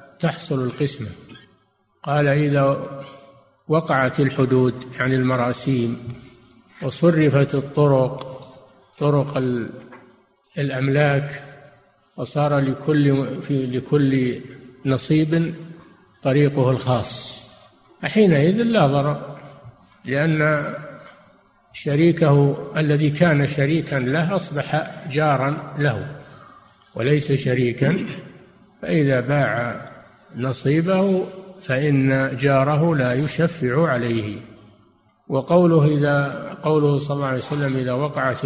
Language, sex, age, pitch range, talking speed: Arabic, male, 50-69, 130-150 Hz, 80 wpm